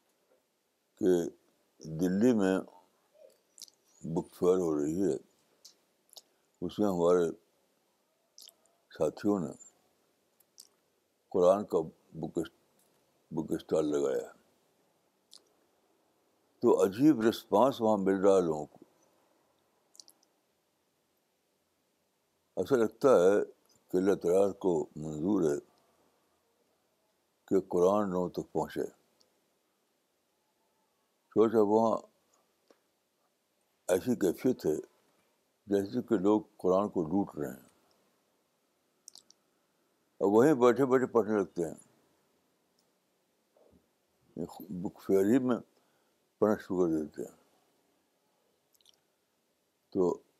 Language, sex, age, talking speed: Urdu, male, 60-79, 80 wpm